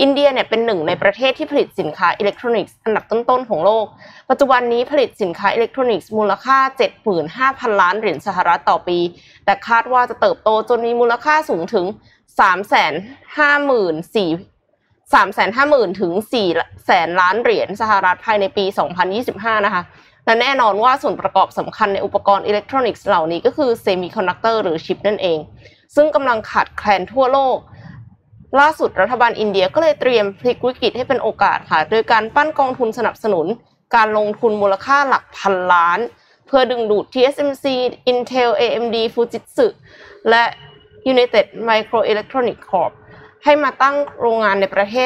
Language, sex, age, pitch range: Thai, female, 20-39, 200-260 Hz